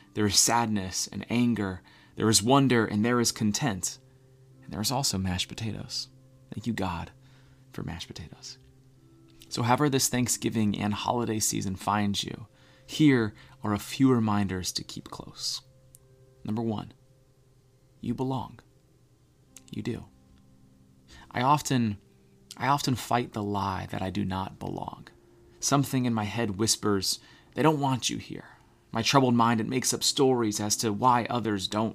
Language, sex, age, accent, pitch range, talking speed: English, male, 30-49, American, 80-130 Hz, 150 wpm